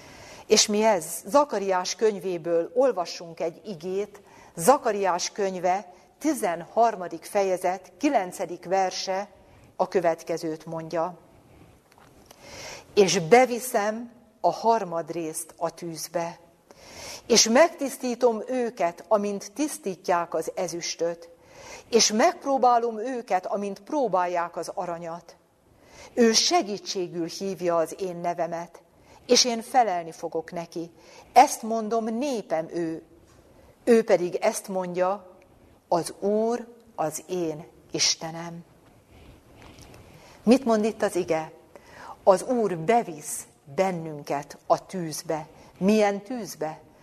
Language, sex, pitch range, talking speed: Hungarian, female, 170-225 Hz, 95 wpm